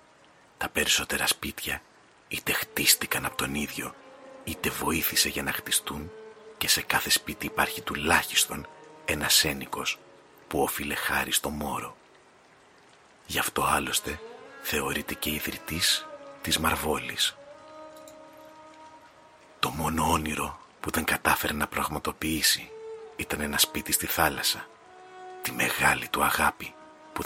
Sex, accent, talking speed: male, native, 115 wpm